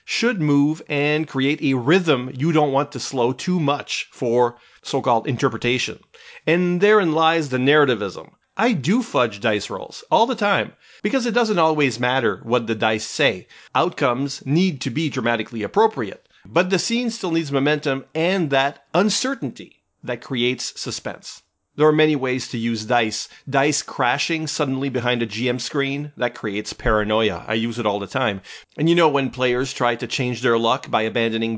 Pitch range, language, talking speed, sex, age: 120-160 Hz, English, 175 wpm, male, 40-59